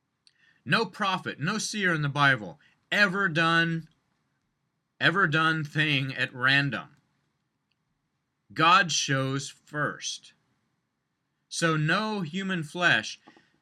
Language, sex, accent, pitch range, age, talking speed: English, male, American, 140-180 Hz, 30-49, 90 wpm